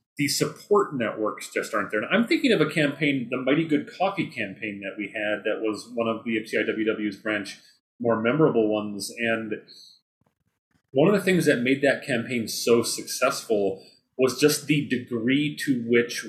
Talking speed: 175 wpm